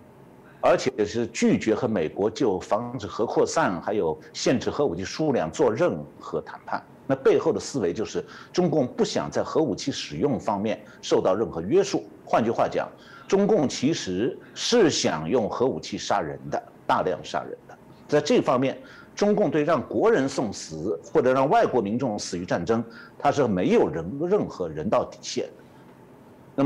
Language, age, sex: Chinese, 60-79, male